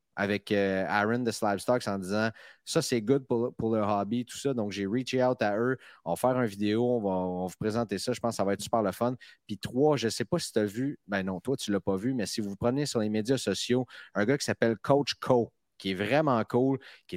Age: 30-49